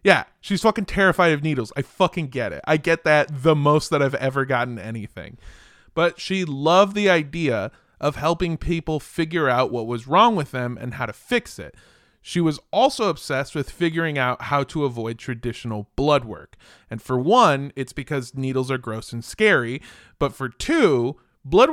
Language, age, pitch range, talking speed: English, 20-39, 125-175 Hz, 185 wpm